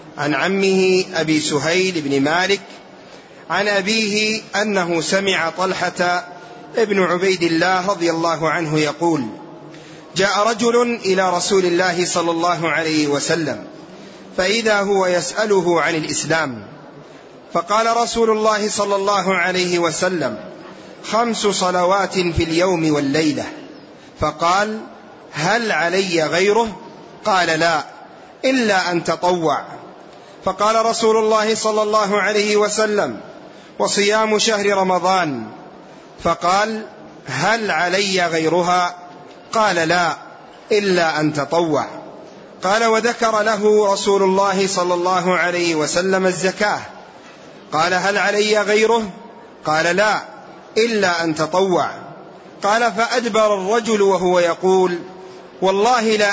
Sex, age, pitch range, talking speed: male, 30-49, 170-210 Hz, 105 wpm